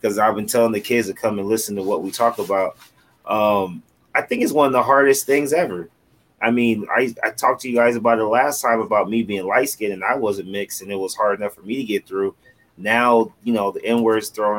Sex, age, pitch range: male, 30-49, 105-125 Hz